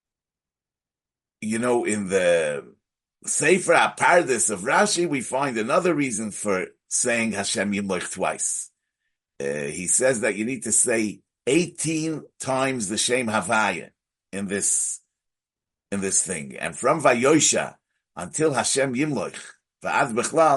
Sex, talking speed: male, 120 wpm